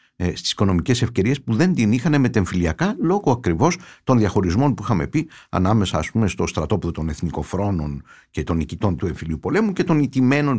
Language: Greek